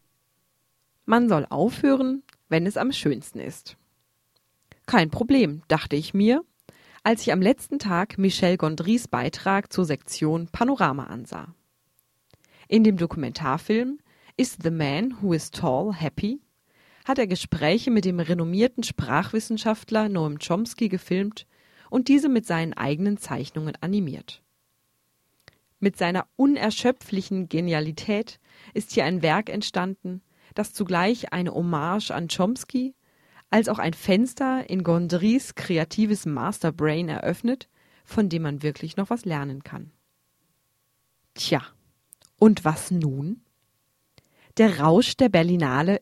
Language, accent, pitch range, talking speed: German, German, 160-225 Hz, 120 wpm